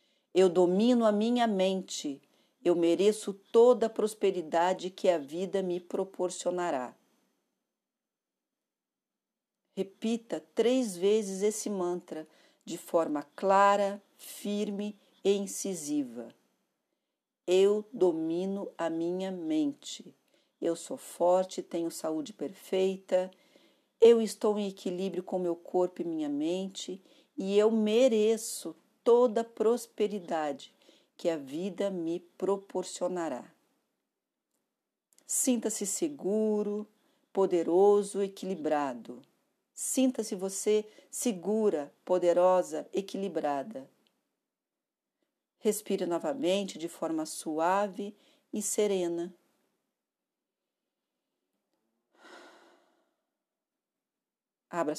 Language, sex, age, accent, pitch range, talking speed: Portuguese, female, 50-69, Brazilian, 175-225 Hz, 80 wpm